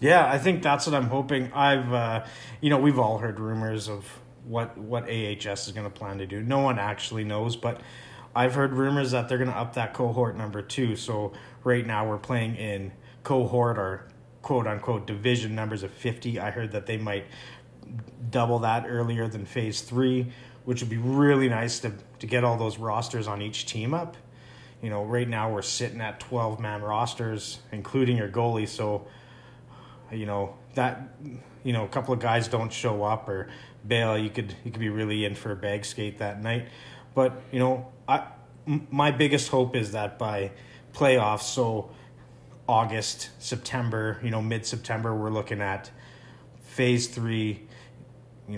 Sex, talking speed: male, 180 wpm